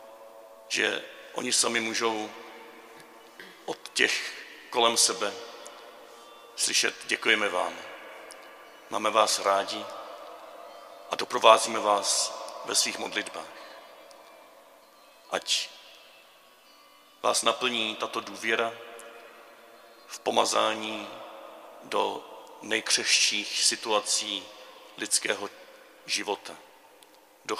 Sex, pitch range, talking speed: male, 110-130 Hz, 70 wpm